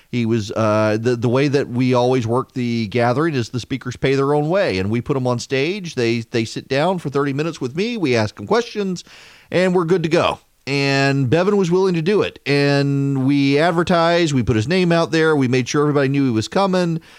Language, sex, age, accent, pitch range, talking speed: English, male, 40-59, American, 115-160 Hz, 235 wpm